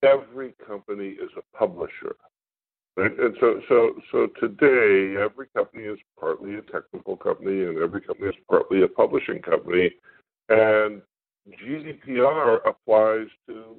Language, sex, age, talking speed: English, female, 60-79, 130 wpm